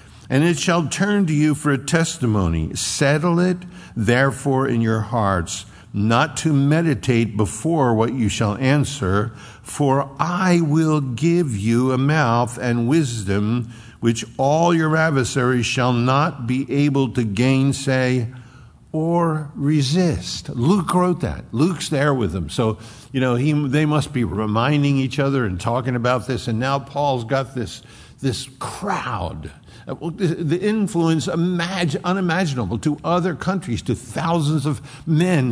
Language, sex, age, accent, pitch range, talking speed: English, male, 50-69, American, 120-160 Hz, 135 wpm